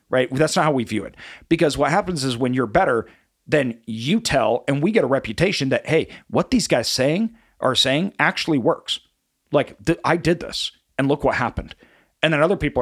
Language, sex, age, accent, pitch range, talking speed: English, male, 40-59, American, 125-165 Hz, 205 wpm